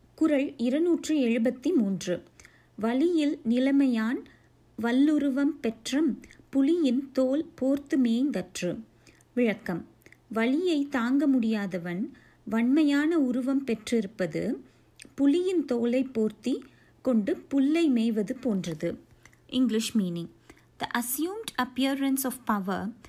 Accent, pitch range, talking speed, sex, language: native, 220-280 Hz, 85 wpm, female, Tamil